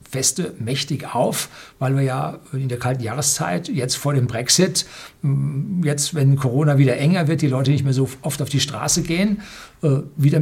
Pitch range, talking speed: 125-150 Hz, 180 wpm